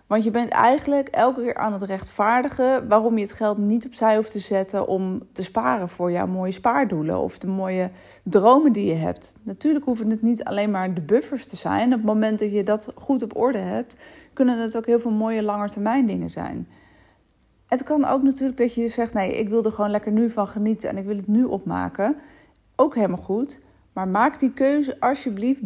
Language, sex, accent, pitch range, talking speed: Dutch, female, Dutch, 190-250 Hz, 215 wpm